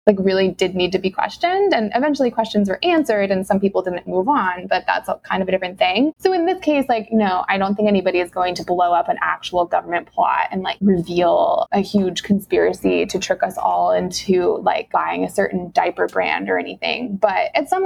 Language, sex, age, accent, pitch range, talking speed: English, female, 20-39, American, 180-225 Hz, 220 wpm